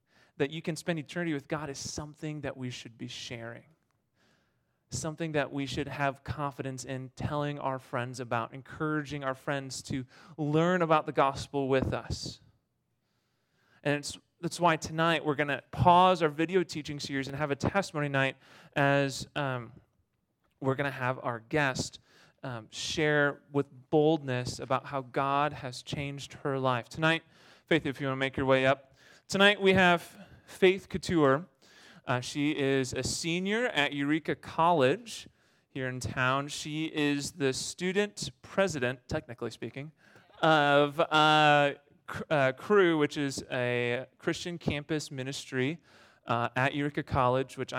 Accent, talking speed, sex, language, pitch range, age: American, 150 wpm, male, English, 130-155 Hz, 30-49